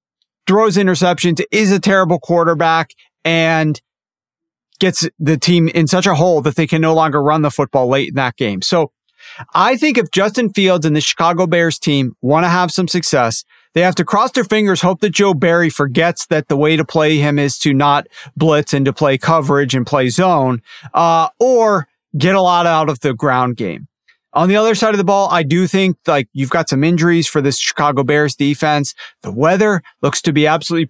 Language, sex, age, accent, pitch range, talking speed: English, male, 40-59, American, 150-185 Hz, 205 wpm